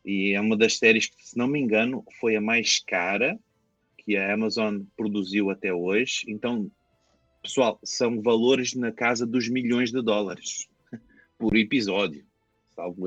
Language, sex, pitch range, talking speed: Portuguese, male, 95-115 Hz, 150 wpm